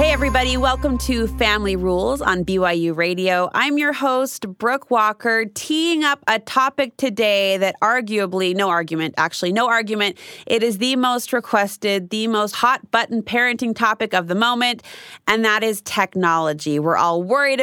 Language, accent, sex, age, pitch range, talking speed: English, American, female, 30-49, 190-250 Hz, 150 wpm